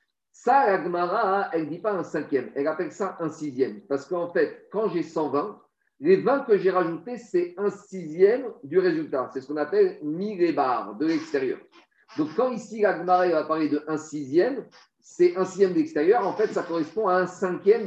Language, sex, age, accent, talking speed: French, male, 50-69, French, 200 wpm